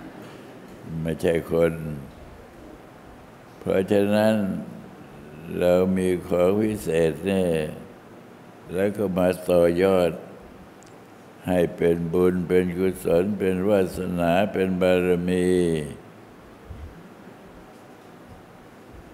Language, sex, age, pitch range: Thai, male, 60-79, 85-95 Hz